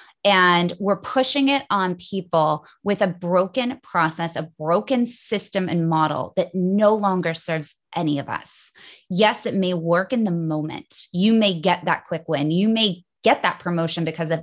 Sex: female